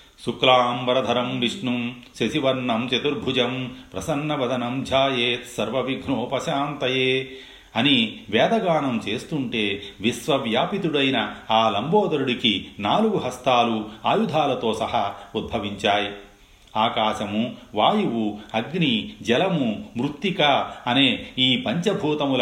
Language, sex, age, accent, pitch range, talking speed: Telugu, male, 40-59, native, 105-150 Hz, 65 wpm